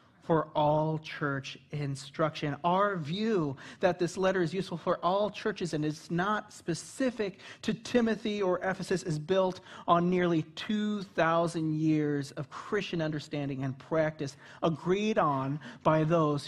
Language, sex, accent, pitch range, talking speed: English, male, American, 155-215 Hz, 135 wpm